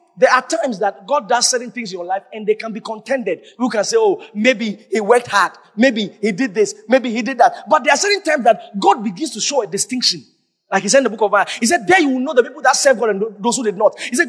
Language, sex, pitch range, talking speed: English, male, 210-325 Hz, 295 wpm